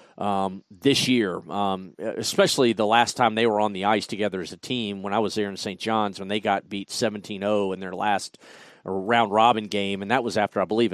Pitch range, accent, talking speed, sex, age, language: 105-125 Hz, American, 225 wpm, male, 40-59, English